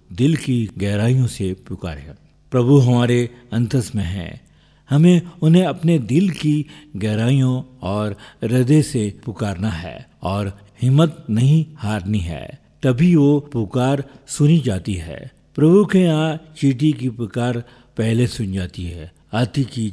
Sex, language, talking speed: male, Hindi, 130 wpm